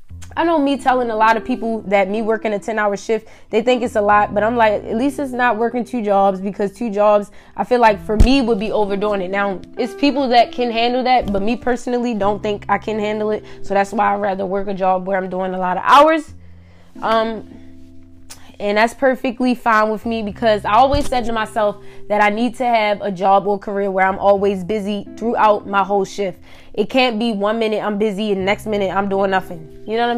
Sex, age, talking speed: female, 20-39, 235 wpm